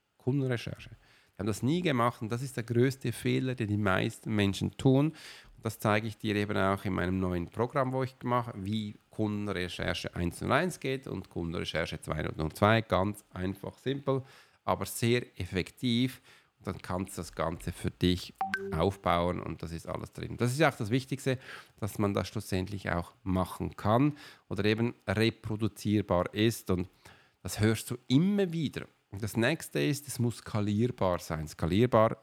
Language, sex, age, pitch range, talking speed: German, male, 40-59, 95-125 Hz, 165 wpm